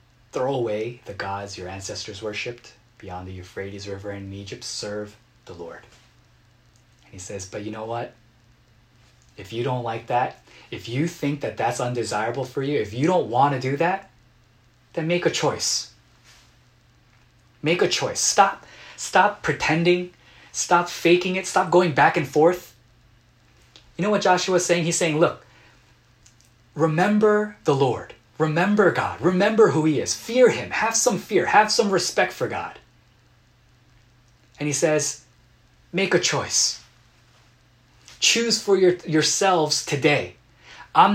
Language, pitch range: Korean, 120-175 Hz